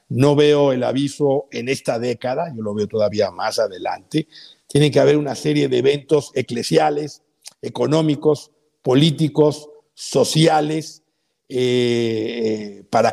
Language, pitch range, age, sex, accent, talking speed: Spanish, 130-160 Hz, 50-69, male, Mexican, 120 wpm